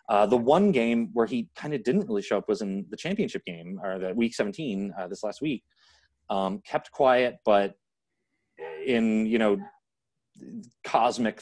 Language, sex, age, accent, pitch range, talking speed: English, male, 30-49, American, 90-110 Hz, 175 wpm